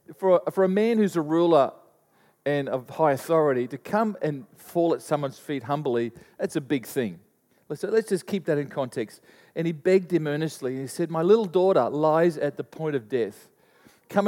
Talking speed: 190 wpm